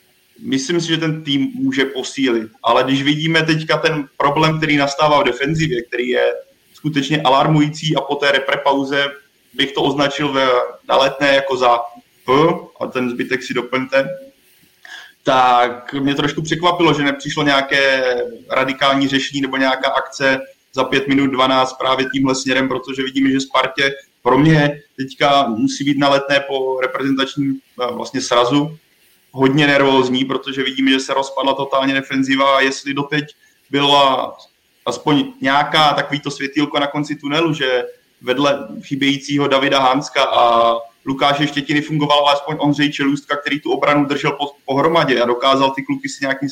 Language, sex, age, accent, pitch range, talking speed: Czech, male, 20-39, native, 135-145 Hz, 150 wpm